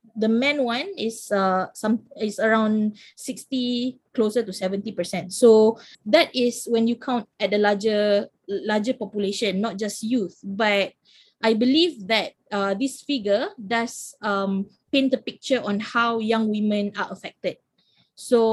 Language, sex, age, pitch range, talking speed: English, female, 20-39, 205-245 Hz, 150 wpm